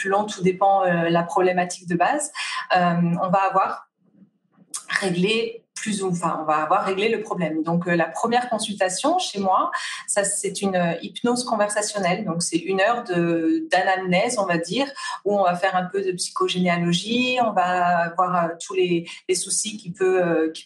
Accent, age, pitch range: French, 30-49, 175-225 Hz